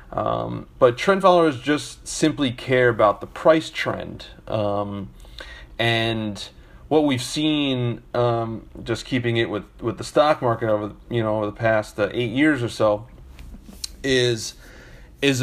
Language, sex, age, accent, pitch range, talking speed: English, male, 30-49, American, 110-125 Hz, 155 wpm